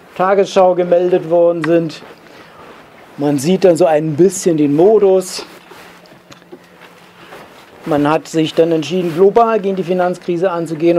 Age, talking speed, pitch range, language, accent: 50-69, 120 wpm, 155-190 Hz, German, German